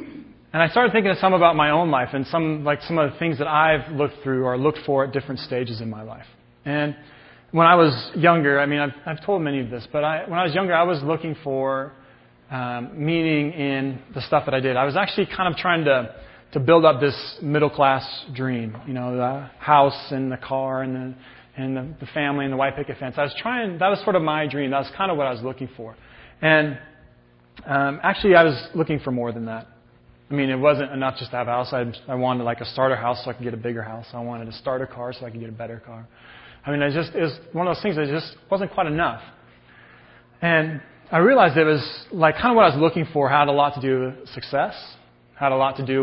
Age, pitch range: 30-49, 125-155 Hz